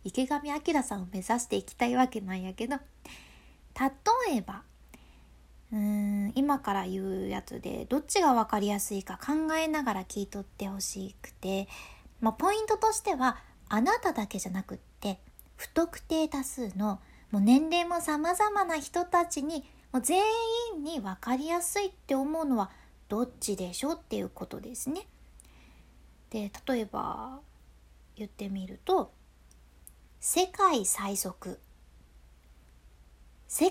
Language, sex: Japanese, female